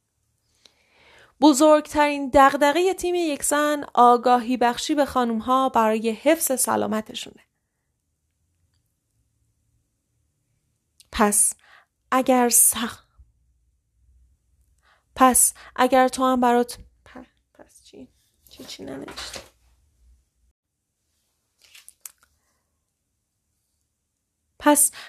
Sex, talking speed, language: female, 60 wpm, Persian